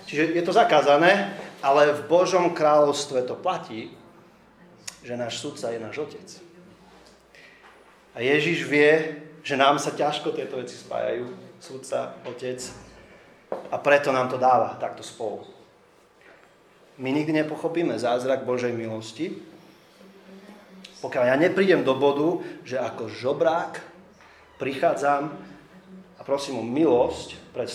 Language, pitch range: Slovak, 130-170 Hz